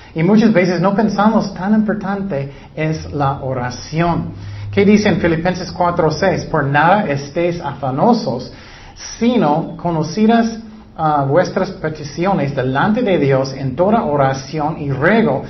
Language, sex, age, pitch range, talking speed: Spanish, male, 40-59, 140-180 Hz, 125 wpm